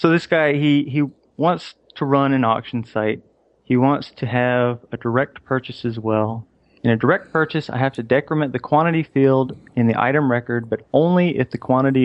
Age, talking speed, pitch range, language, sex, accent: 30-49, 200 wpm, 115-135 Hz, English, male, American